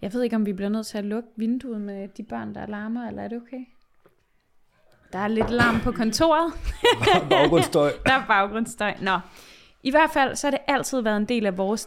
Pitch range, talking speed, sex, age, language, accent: 195-235 Hz, 225 wpm, female, 20-39, Danish, native